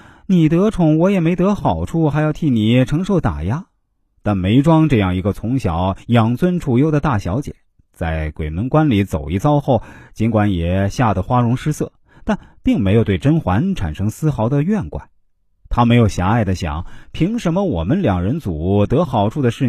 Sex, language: male, Chinese